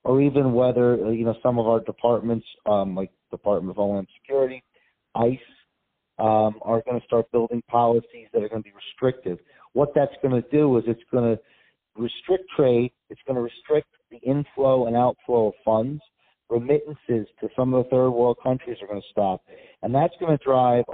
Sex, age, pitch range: male, 40-59, 115-130 Hz